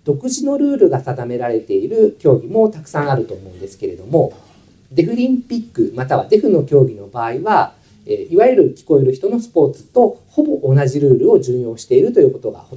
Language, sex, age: Japanese, male, 50-69